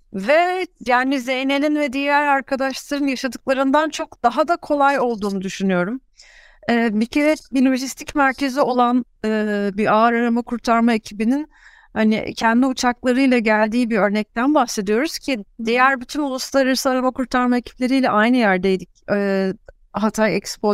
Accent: native